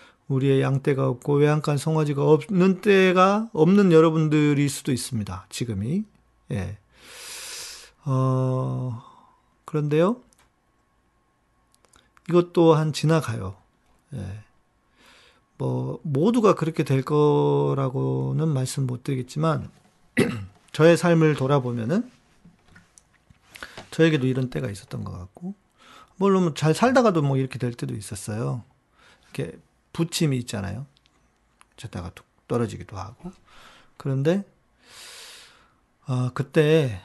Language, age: Korean, 40-59